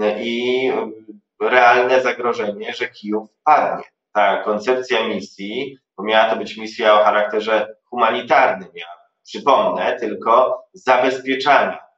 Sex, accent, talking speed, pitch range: male, native, 105 wpm, 110-130 Hz